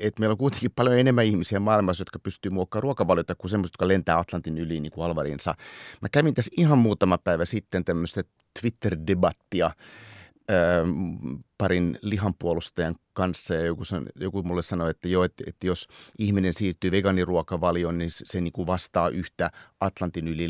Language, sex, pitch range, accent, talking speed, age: Finnish, male, 85-105 Hz, native, 165 wpm, 30-49